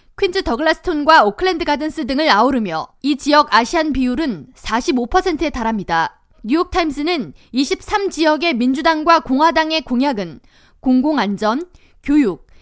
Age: 20-39